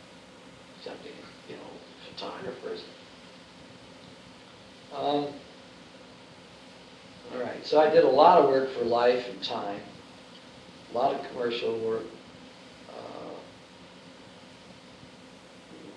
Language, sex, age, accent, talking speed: English, male, 60-79, American, 85 wpm